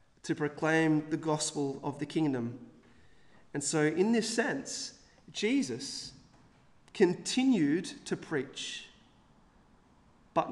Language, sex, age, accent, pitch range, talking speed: English, male, 30-49, Australian, 145-180 Hz, 95 wpm